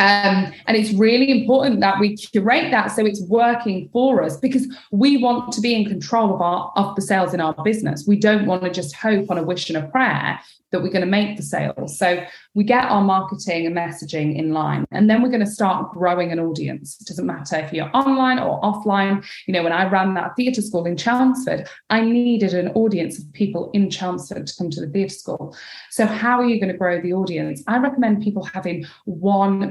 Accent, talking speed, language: British, 225 wpm, English